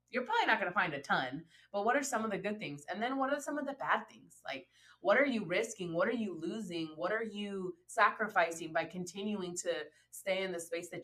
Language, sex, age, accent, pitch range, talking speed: English, female, 20-39, American, 165-225 Hz, 250 wpm